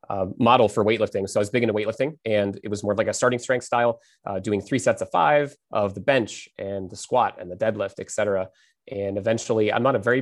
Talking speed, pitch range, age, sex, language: 255 wpm, 100-115 Hz, 30-49, male, English